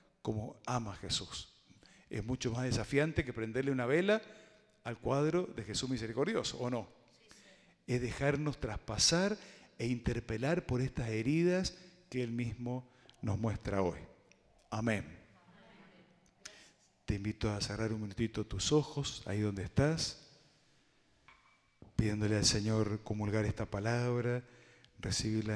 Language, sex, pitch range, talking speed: Spanish, male, 105-130 Hz, 120 wpm